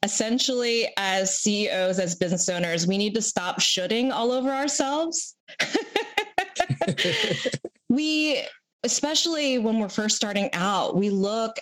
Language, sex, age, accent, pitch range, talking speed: English, female, 20-39, American, 195-260 Hz, 120 wpm